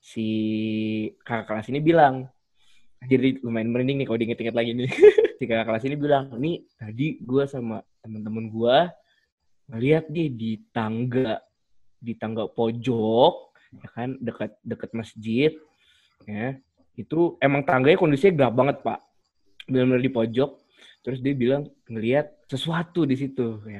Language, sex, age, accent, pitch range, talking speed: Indonesian, male, 20-39, native, 115-135 Hz, 145 wpm